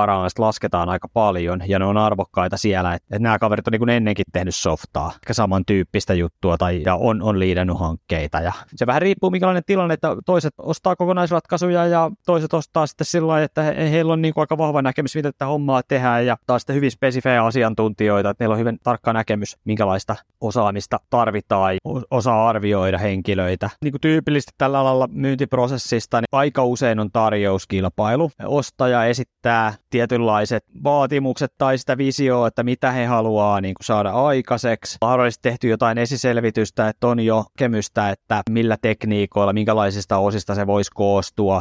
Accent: native